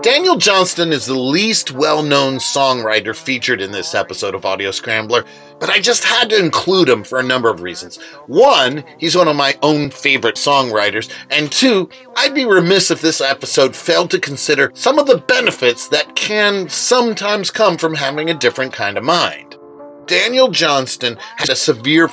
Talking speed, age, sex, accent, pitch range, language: 175 wpm, 40-59, male, American, 120-170 Hz, English